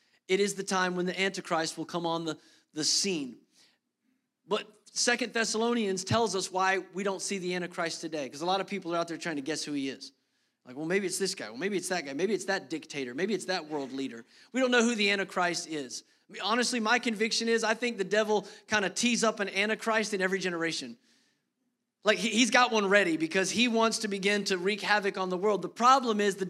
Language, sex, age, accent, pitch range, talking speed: English, male, 30-49, American, 190-240 Hz, 235 wpm